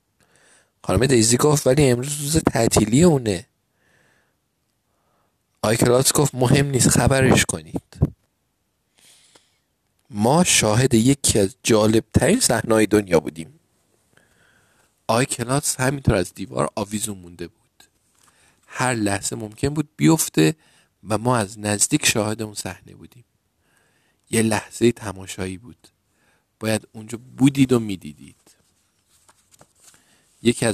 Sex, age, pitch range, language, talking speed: male, 50-69, 95-130 Hz, Persian, 105 wpm